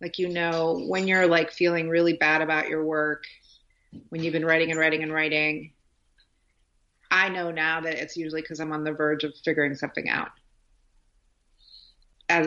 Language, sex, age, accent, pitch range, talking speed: English, female, 30-49, American, 150-165 Hz, 175 wpm